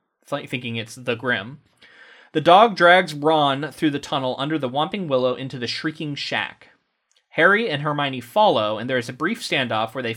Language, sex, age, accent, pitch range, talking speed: English, male, 30-49, American, 130-175 Hz, 195 wpm